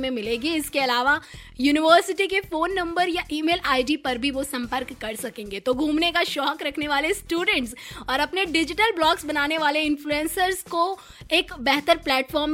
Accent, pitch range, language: native, 260-320 Hz, Hindi